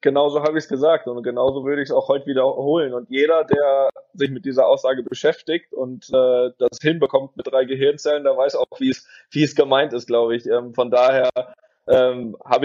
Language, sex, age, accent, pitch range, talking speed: German, male, 20-39, German, 125-165 Hz, 210 wpm